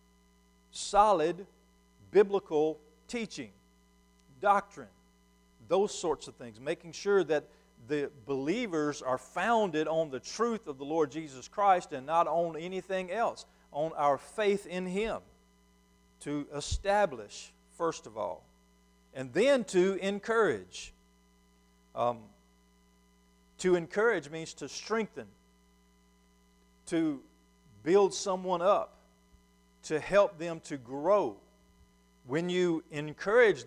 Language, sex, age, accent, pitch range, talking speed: English, male, 50-69, American, 130-185 Hz, 105 wpm